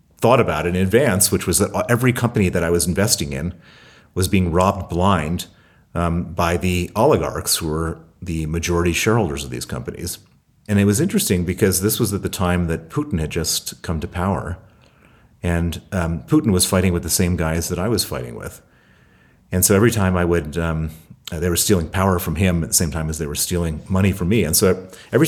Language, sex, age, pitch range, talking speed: English, male, 40-59, 85-100 Hz, 210 wpm